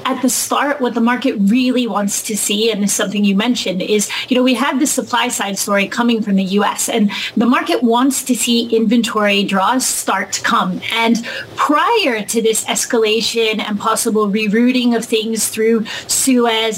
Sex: female